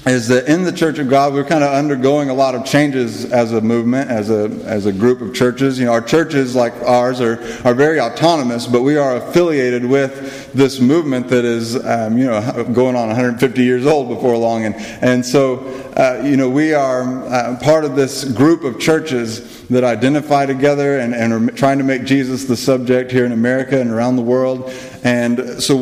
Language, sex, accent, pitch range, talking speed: English, male, American, 120-140 Hz, 210 wpm